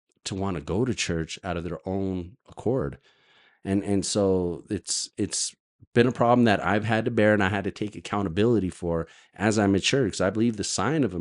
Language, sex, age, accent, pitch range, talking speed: English, male, 30-49, American, 100-130 Hz, 220 wpm